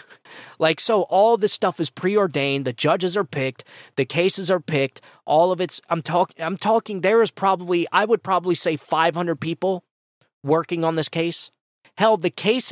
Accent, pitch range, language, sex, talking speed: American, 145-180 Hz, English, male, 180 wpm